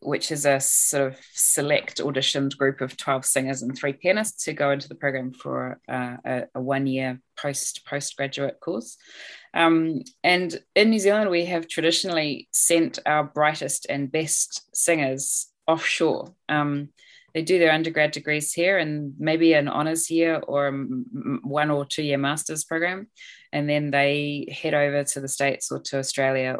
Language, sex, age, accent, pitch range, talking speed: English, female, 20-39, Australian, 140-165 Hz, 165 wpm